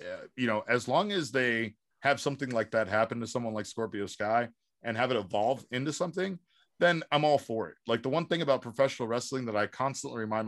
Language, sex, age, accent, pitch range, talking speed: English, male, 30-49, American, 110-130 Hz, 220 wpm